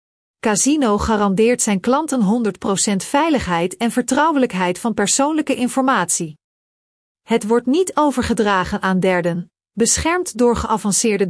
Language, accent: Dutch, Dutch